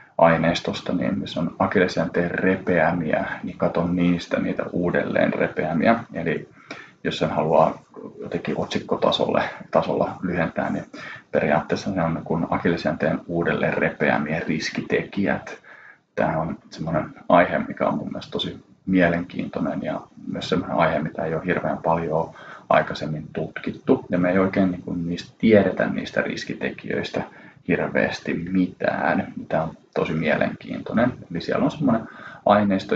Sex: male